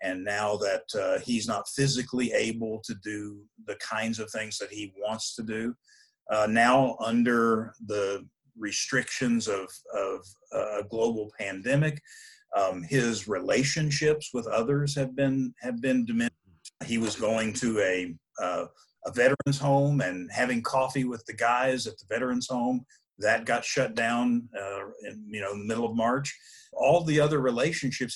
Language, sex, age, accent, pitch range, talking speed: English, male, 50-69, American, 110-140 Hz, 160 wpm